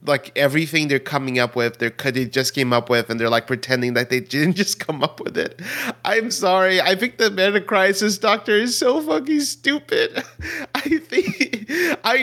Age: 30-49